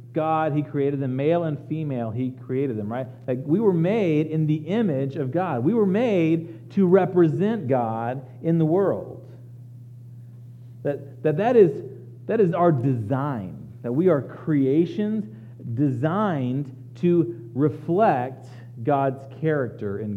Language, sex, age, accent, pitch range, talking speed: English, male, 40-59, American, 120-180 Hz, 145 wpm